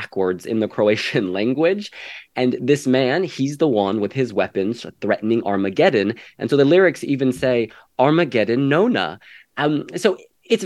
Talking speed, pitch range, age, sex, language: 150 wpm, 105-145 Hz, 20-39, male, English